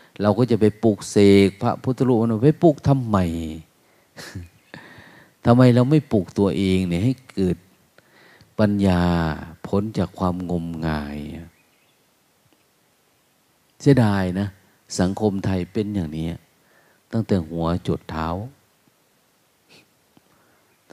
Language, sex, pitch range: Thai, male, 85-115 Hz